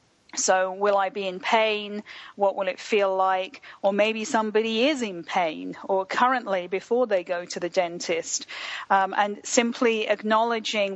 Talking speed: 160 wpm